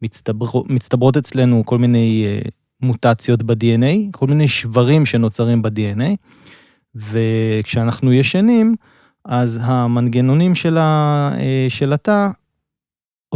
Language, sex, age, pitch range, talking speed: Hebrew, male, 20-39, 115-140 Hz, 80 wpm